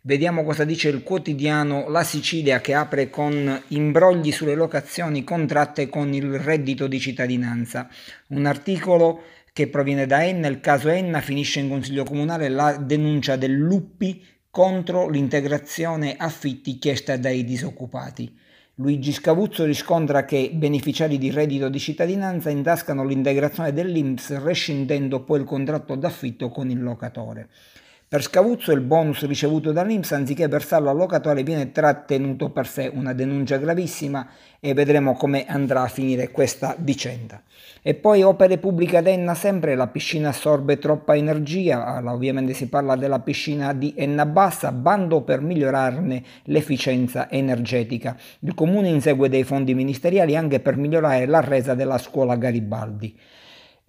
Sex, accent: male, native